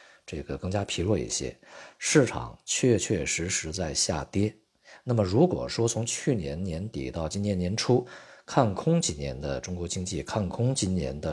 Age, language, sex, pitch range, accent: 50-69, Chinese, male, 85-110 Hz, native